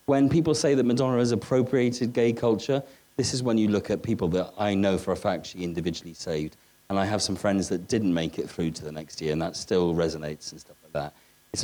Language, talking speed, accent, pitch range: English, 245 wpm, British, 95-140 Hz